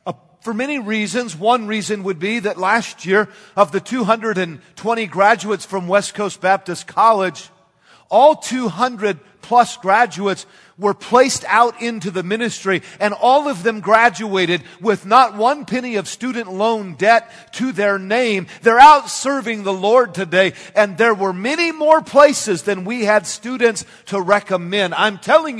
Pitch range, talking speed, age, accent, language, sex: 160-230 Hz, 150 wpm, 50-69, American, English, male